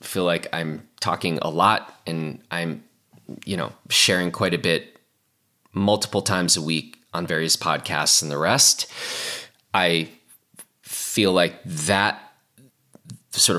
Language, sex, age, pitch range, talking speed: English, male, 20-39, 80-105 Hz, 130 wpm